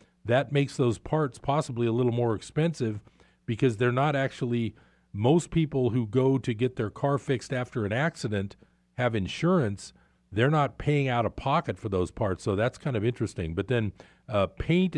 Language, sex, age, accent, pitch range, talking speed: English, male, 40-59, American, 105-140 Hz, 180 wpm